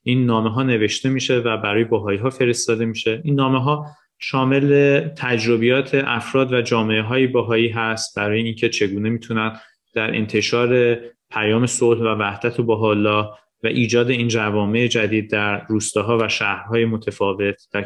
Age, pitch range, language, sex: 30-49, 110-120 Hz, Persian, male